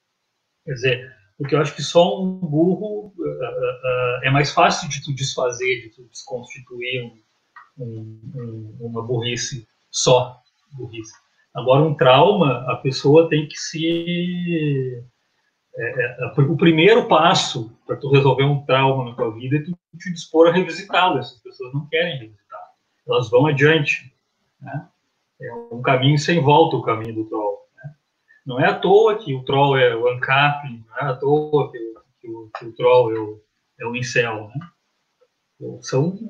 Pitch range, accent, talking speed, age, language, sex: 125-175 Hz, Brazilian, 150 wpm, 40-59, Portuguese, male